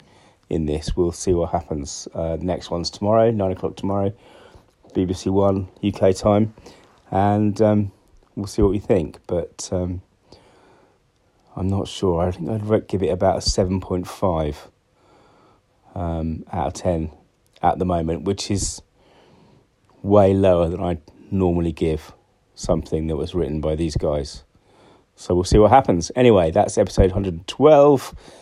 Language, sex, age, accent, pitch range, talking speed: English, male, 30-49, British, 90-105 Hz, 140 wpm